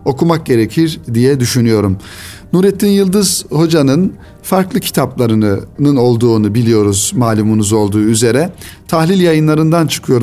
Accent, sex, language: native, male, Turkish